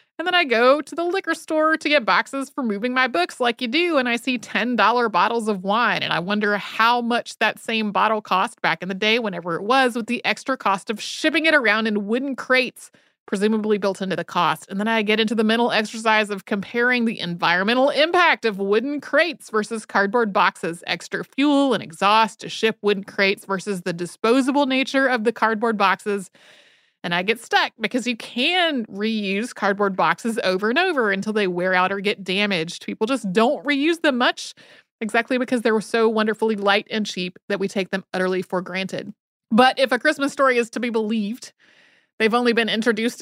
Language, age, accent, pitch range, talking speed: English, 30-49, American, 195-255 Hz, 205 wpm